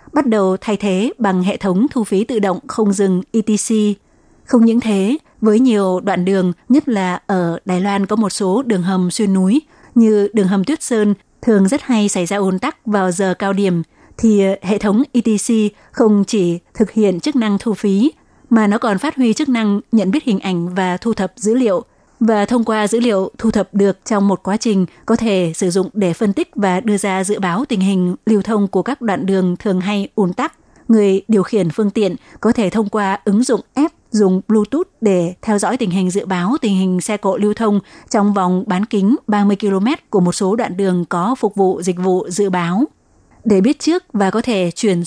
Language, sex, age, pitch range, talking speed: Vietnamese, female, 20-39, 190-225 Hz, 220 wpm